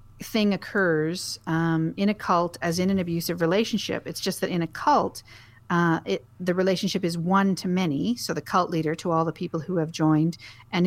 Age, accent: 40-59, American